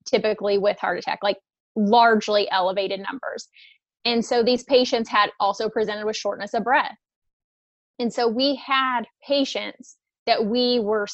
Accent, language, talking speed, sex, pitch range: American, English, 145 wpm, female, 205-240 Hz